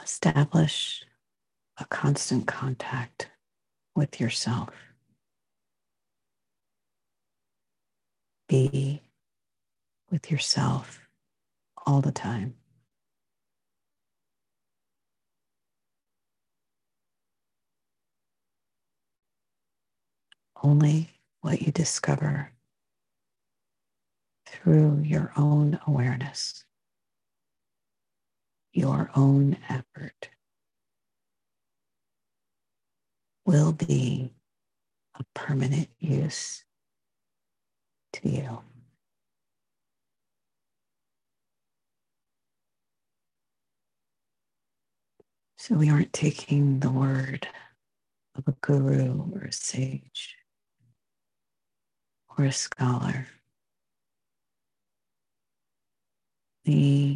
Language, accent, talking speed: English, American, 50 wpm